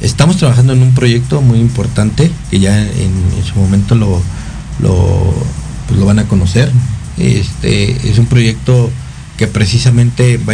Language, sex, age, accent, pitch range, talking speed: Spanish, male, 50-69, Mexican, 100-125 Hz, 140 wpm